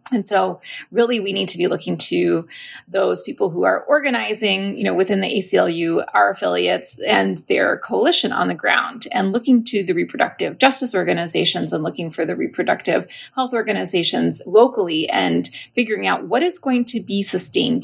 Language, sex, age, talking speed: English, female, 30-49, 170 wpm